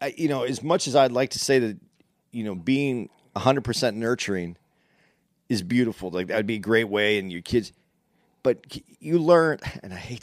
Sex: male